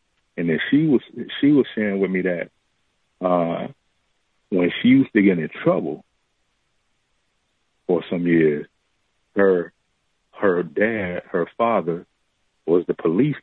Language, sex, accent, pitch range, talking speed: English, male, American, 80-100 Hz, 130 wpm